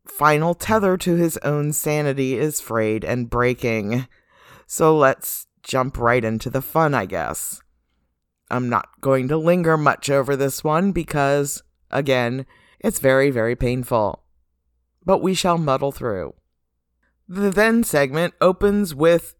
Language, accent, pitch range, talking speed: English, American, 120-155 Hz, 135 wpm